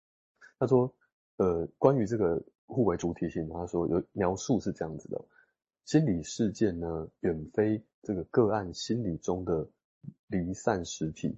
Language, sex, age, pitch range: Chinese, male, 20-39, 85-115 Hz